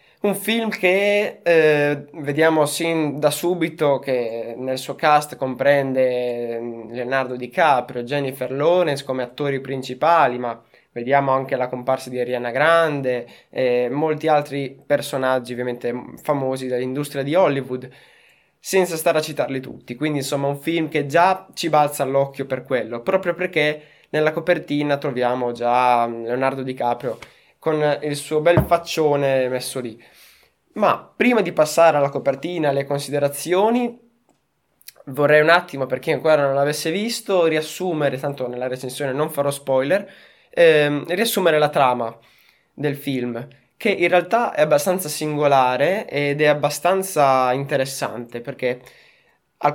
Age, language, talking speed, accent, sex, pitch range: 20-39, Italian, 135 wpm, native, male, 130-160 Hz